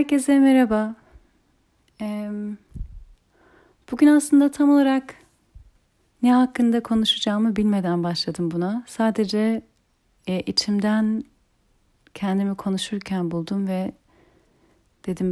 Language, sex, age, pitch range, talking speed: Turkish, female, 40-59, 185-230 Hz, 75 wpm